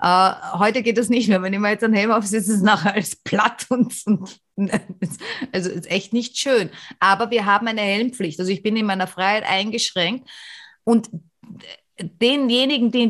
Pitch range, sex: 185-235 Hz, female